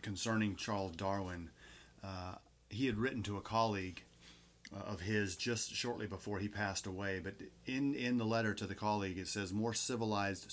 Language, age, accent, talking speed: English, 30-49, American, 170 wpm